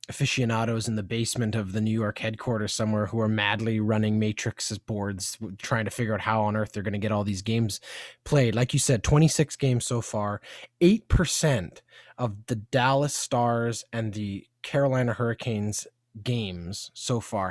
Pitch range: 110-130 Hz